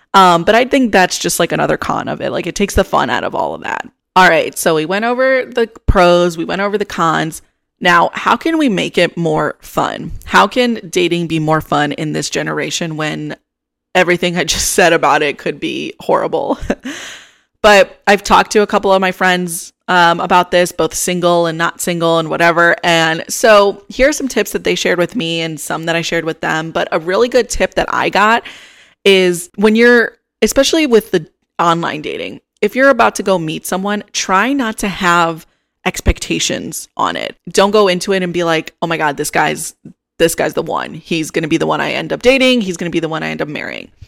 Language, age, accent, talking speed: English, 20-39, American, 225 wpm